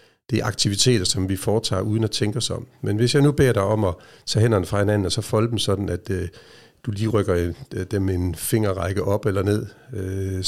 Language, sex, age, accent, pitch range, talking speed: Danish, male, 60-79, native, 100-120 Hz, 235 wpm